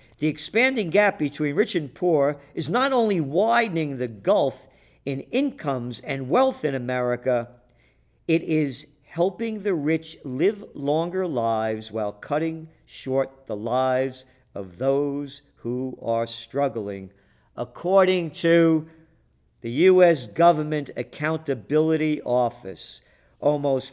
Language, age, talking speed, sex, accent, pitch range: English, 50-69, 115 wpm, male, American, 120-165 Hz